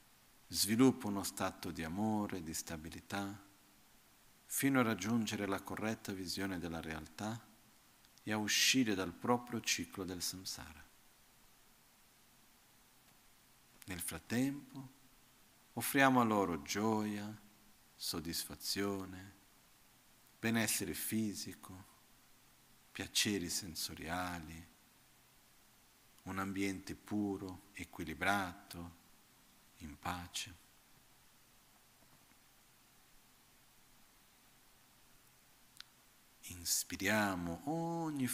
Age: 50-69